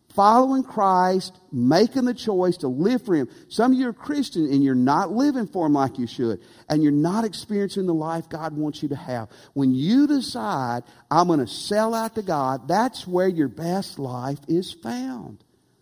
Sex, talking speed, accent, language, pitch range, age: male, 195 wpm, American, English, 140-225 Hz, 50-69